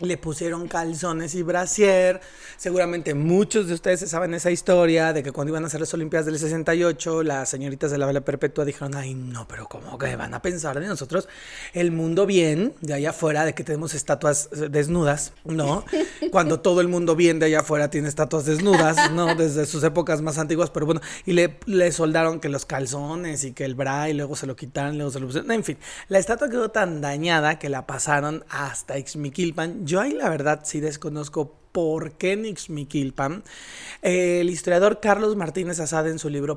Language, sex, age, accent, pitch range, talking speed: Spanish, male, 30-49, Mexican, 150-175 Hz, 195 wpm